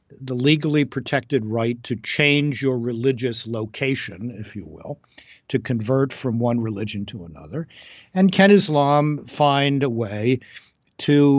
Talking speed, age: 135 wpm, 60-79